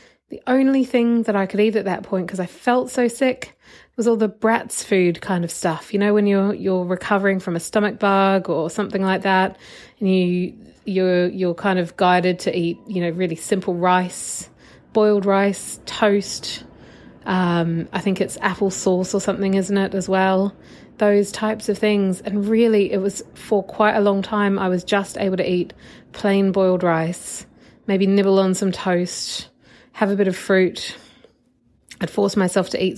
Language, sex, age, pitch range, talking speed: English, female, 30-49, 185-220 Hz, 185 wpm